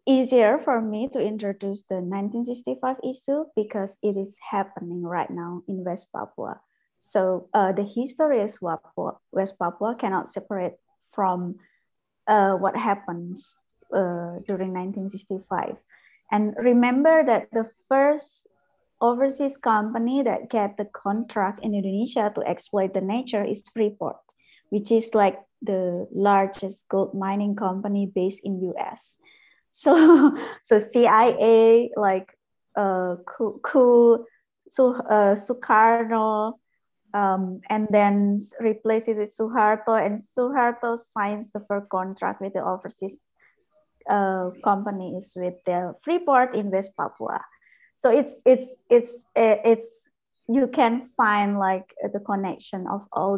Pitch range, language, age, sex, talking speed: 195-240 Hz, English, 20-39, female, 125 wpm